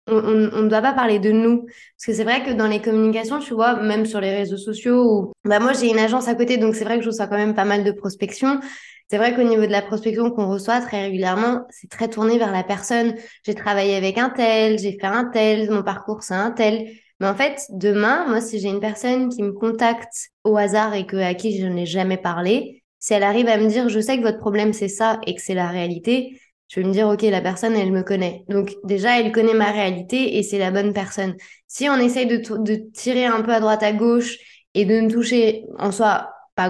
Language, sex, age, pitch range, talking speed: French, female, 20-39, 195-230 Hz, 260 wpm